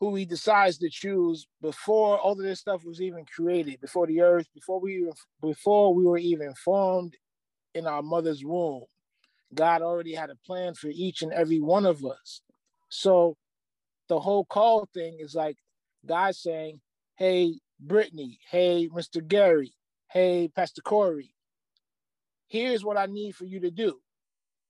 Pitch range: 165-200 Hz